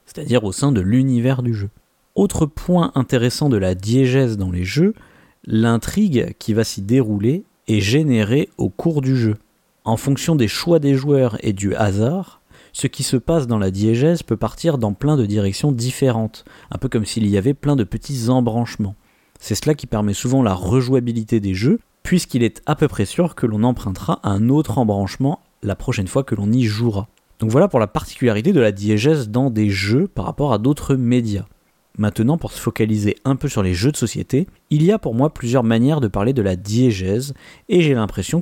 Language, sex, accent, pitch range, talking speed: French, male, French, 110-145 Hz, 205 wpm